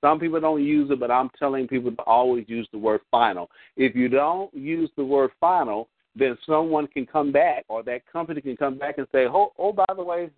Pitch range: 115-145 Hz